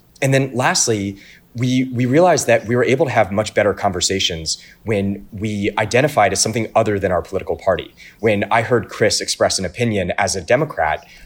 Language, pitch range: English, 90-115 Hz